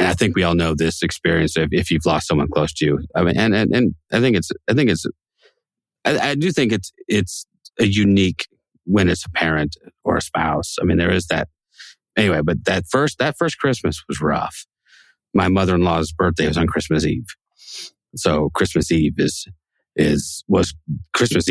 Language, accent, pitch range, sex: English, American, 80-95 Hz, male